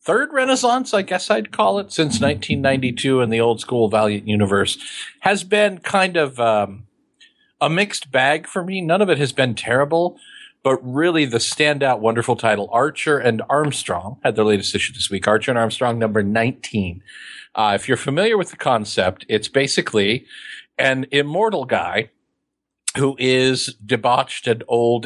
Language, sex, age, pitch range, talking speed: English, male, 50-69, 115-150 Hz, 165 wpm